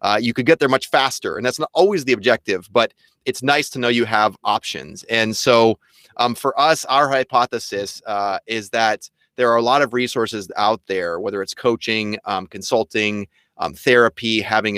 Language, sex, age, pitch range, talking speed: English, male, 30-49, 100-120 Hz, 195 wpm